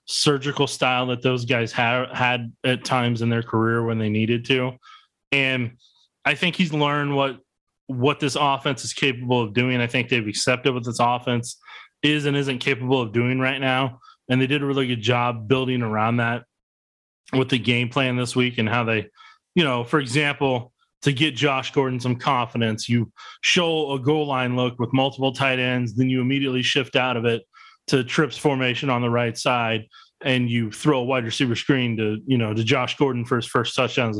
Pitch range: 120-145 Hz